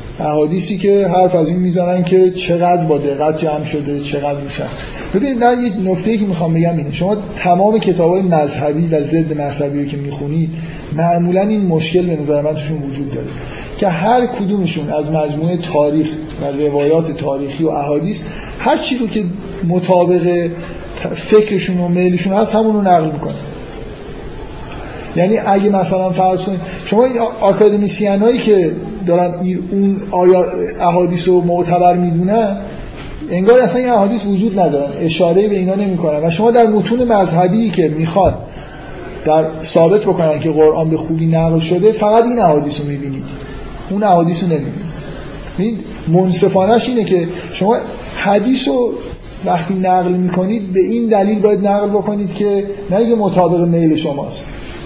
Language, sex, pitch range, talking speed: Persian, male, 155-200 Hz, 145 wpm